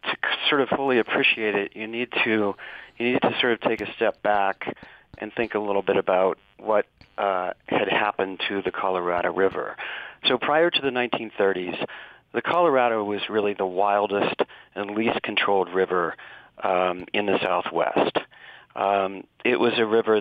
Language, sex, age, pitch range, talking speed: English, male, 40-59, 95-110 Hz, 165 wpm